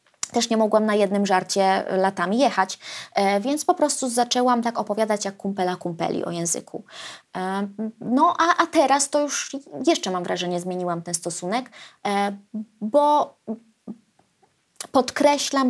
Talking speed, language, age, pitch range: 120 wpm, Polish, 20-39, 190-265 Hz